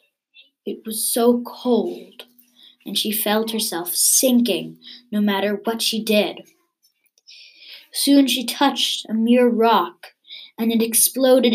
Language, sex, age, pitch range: English, female, 20-39, 205-255 Hz